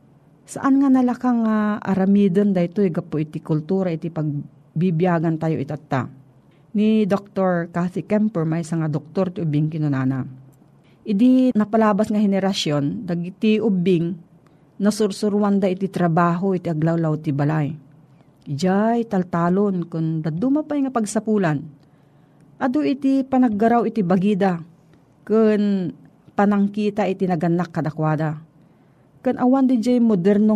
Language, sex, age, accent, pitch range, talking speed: Filipino, female, 40-59, native, 165-220 Hz, 110 wpm